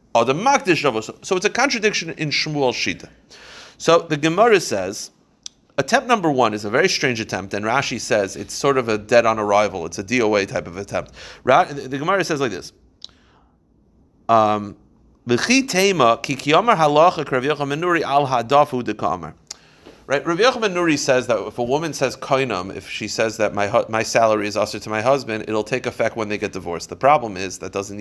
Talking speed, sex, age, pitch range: 165 wpm, male, 30-49, 110-155 Hz